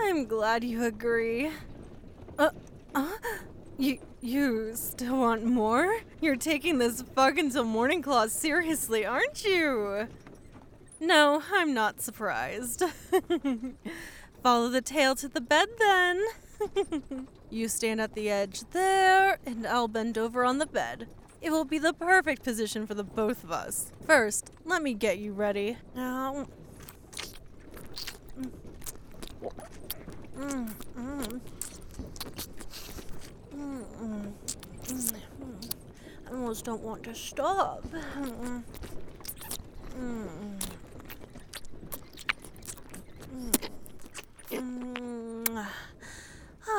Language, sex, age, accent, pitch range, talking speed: English, female, 10-29, American, 230-315 Hz, 95 wpm